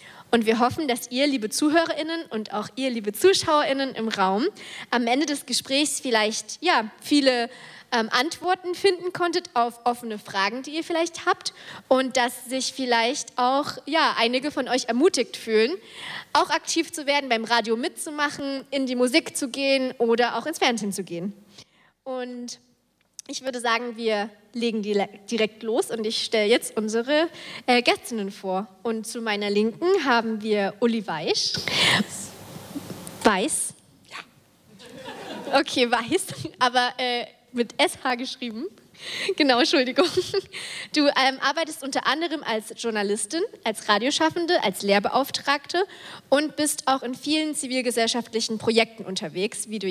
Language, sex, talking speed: German, female, 140 wpm